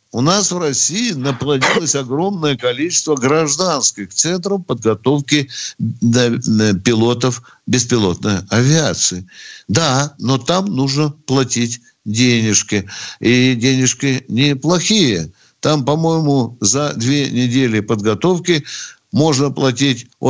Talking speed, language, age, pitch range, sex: 90 wpm, Russian, 60-79, 115-150 Hz, male